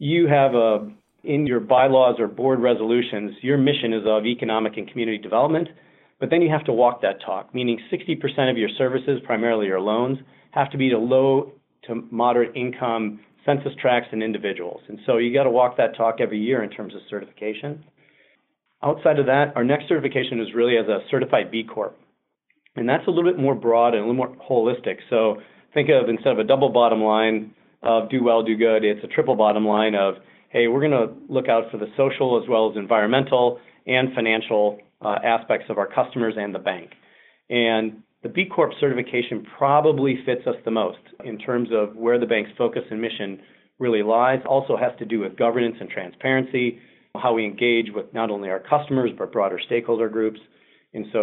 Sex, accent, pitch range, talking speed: male, American, 110-135 Hz, 195 wpm